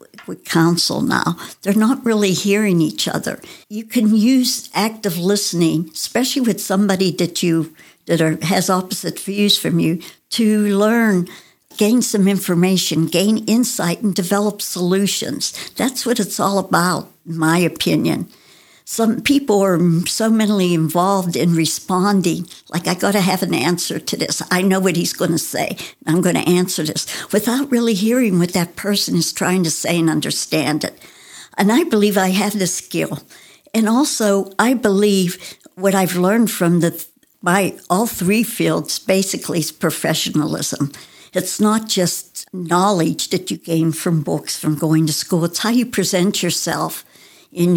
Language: English